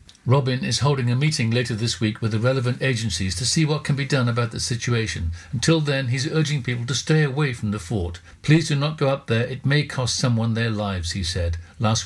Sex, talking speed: male, 235 wpm